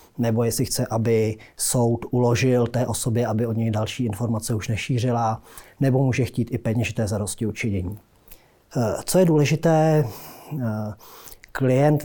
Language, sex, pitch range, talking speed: Czech, male, 115-135 Hz, 130 wpm